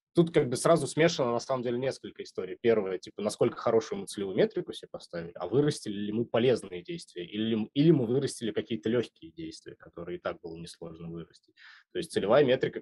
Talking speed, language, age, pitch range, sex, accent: 195 wpm, Russian, 20-39, 100-130 Hz, male, native